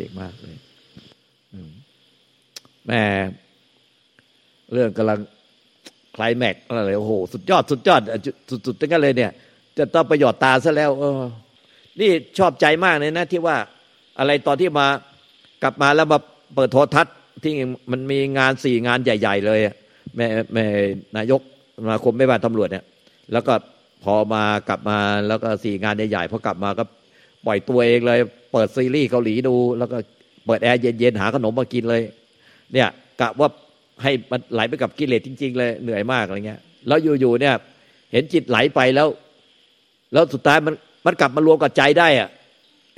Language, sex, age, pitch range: Thai, male, 60-79, 110-145 Hz